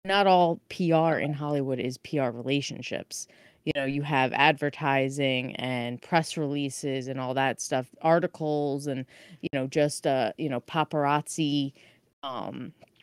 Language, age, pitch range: English, 20-39, 140-170 Hz